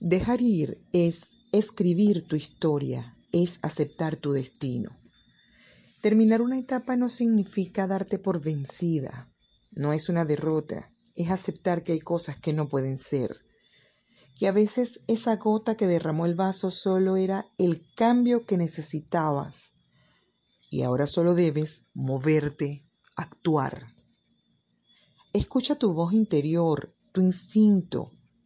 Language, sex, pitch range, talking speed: Spanish, female, 150-205 Hz, 120 wpm